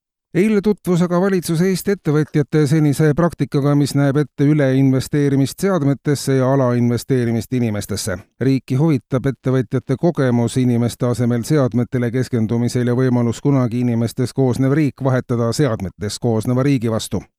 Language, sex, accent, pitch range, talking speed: Dutch, male, Finnish, 120-145 Hz, 120 wpm